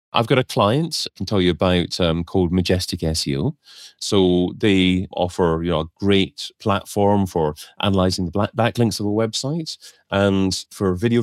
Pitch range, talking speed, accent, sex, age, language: 90-110 Hz, 170 wpm, British, male, 30-49, English